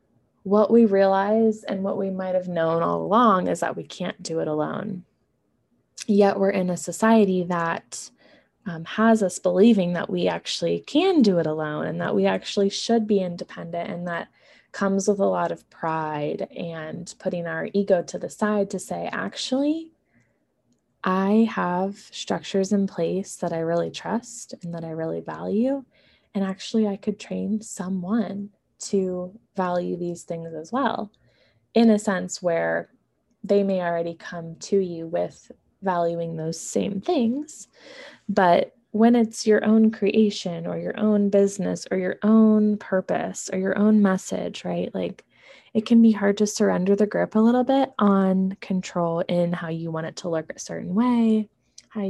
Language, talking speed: English, 165 wpm